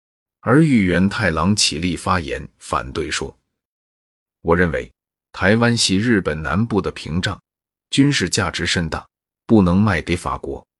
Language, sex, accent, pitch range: Chinese, male, native, 80-105 Hz